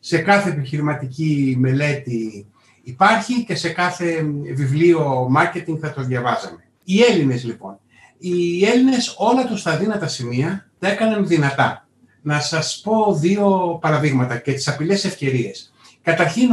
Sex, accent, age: male, native, 60-79